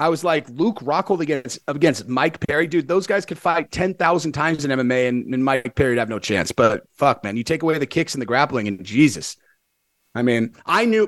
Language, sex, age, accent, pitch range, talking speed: English, male, 30-49, American, 130-165 Hz, 235 wpm